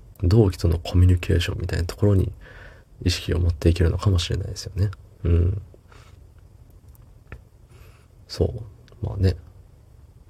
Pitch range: 90-105 Hz